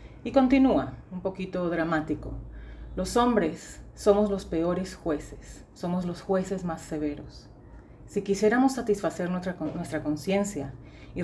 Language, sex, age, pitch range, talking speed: English, female, 40-59, 185-245 Hz, 125 wpm